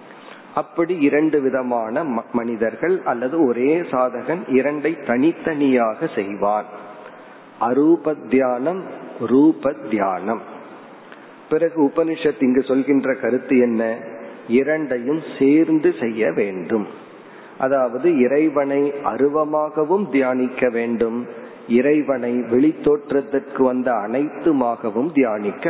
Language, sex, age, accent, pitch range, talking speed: Tamil, male, 40-59, native, 120-150 Hz, 55 wpm